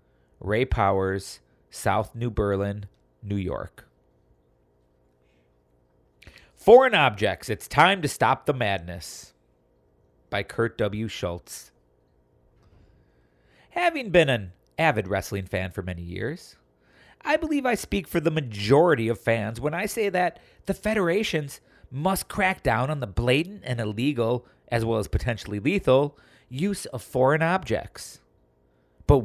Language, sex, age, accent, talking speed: English, male, 40-59, American, 125 wpm